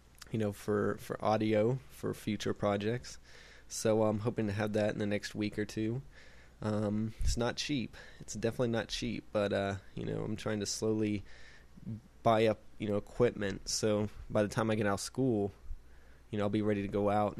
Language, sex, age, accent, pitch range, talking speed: English, male, 20-39, American, 100-110 Hz, 200 wpm